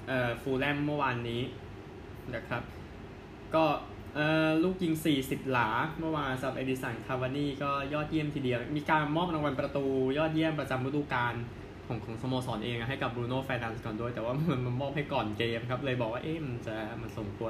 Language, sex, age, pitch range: Thai, male, 20-39, 115-145 Hz